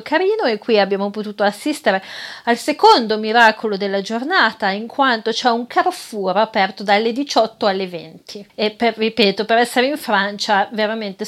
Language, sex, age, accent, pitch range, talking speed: Italian, female, 30-49, native, 200-240 Hz, 150 wpm